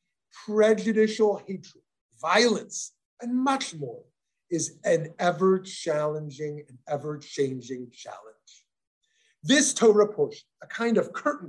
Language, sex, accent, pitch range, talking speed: English, male, American, 155-235 Hz, 110 wpm